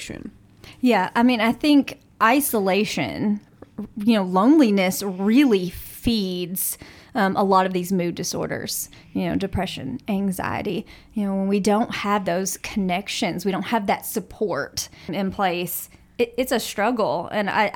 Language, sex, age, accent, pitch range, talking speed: English, female, 30-49, American, 195-235 Hz, 140 wpm